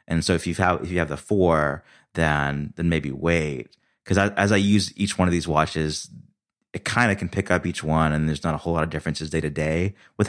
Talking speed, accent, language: 255 wpm, American, English